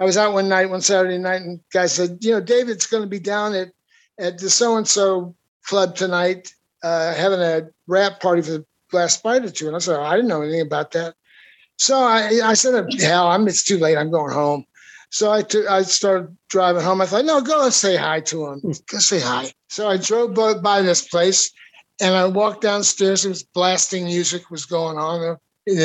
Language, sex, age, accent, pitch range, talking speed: English, male, 60-79, American, 175-230 Hz, 220 wpm